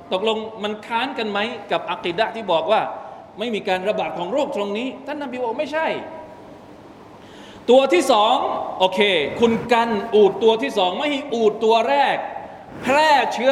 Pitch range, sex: 225-310 Hz, male